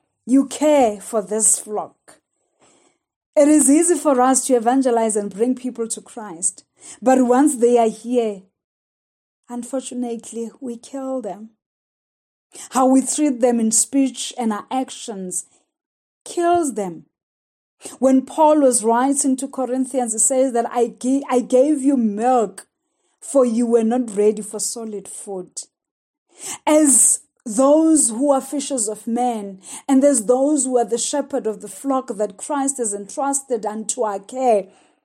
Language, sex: English, female